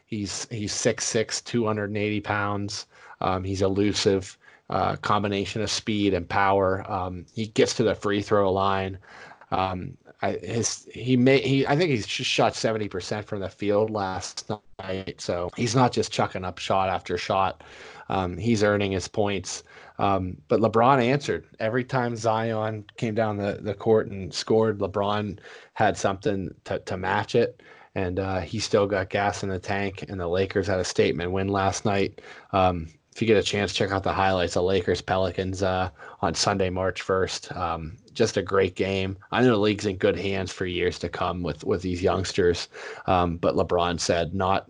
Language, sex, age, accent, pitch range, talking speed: English, male, 20-39, American, 95-110 Hz, 180 wpm